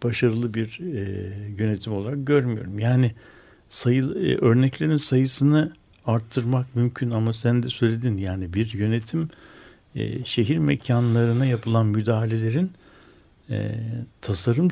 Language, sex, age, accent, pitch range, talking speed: Turkish, male, 60-79, native, 105-130 Hz, 110 wpm